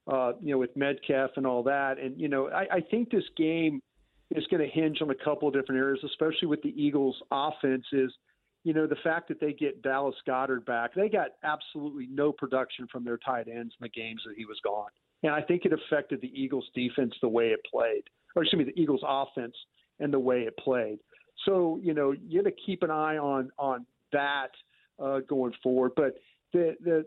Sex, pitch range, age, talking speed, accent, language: male, 135-160 Hz, 50-69, 220 wpm, American, English